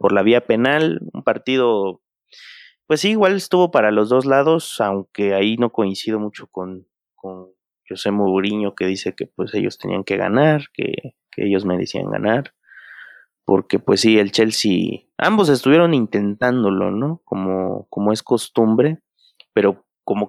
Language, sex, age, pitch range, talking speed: Spanish, male, 30-49, 100-130 Hz, 155 wpm